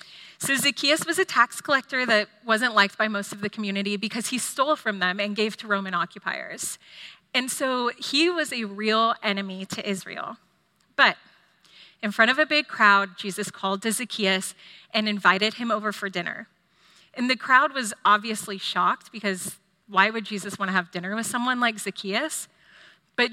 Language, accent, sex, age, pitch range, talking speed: English, American, female, 30-49, 195-250 Hz, 175 wpm